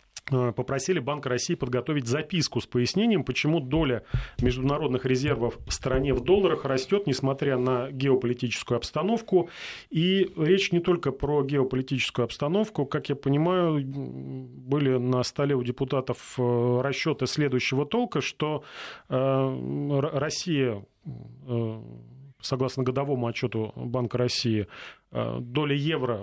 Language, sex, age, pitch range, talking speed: Russian, male, 30-49, 120-145 Hz, 110 wpm